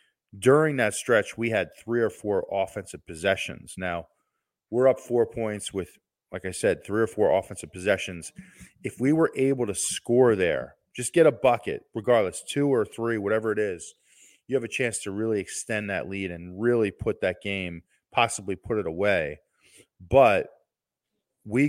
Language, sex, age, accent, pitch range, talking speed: English, male, 30-49, American, 95-115 Hz, 170 wpm